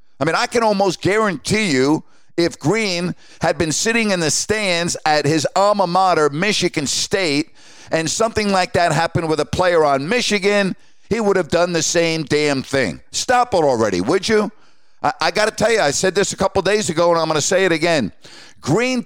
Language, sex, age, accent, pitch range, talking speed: English, male, 50-69, American, 150-205 Hz, 200 wpm